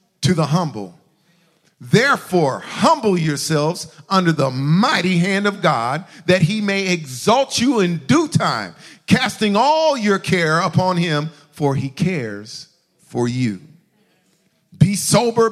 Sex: male